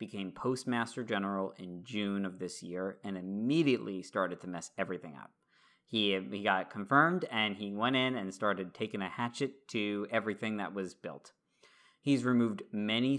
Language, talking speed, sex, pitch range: English, 165 wpm, male, 95-120 Hz